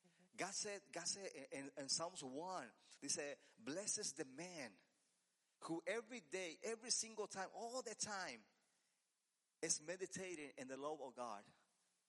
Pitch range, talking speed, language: 135-190 Hz, 150 wpm, English